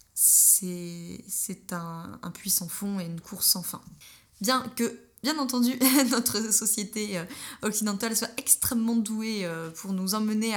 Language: French